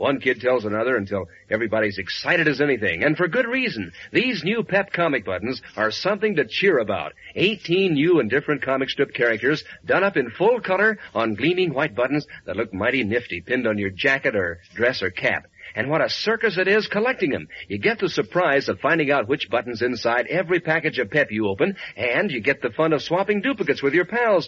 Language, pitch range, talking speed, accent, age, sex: English, 135-215 Hz, 210 wpm, American, 50-69, male